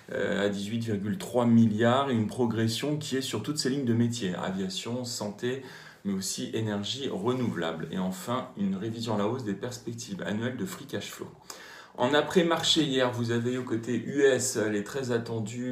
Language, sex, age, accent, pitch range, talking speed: French, male, 40-59, French, 105-130 Hz, 170 wpm